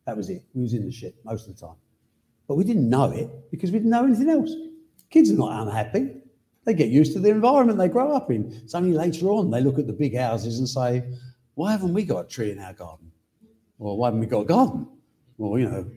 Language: English